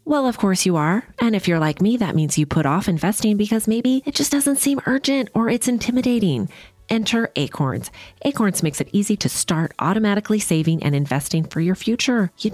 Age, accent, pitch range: 30-49, American, 145-210 Hz